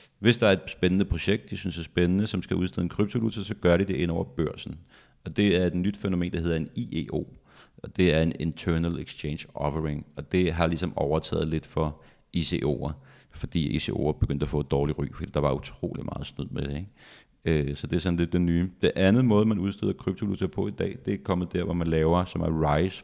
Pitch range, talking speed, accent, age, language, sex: 75-90 Hz, 235 wpm, native, 30-49, Danish, male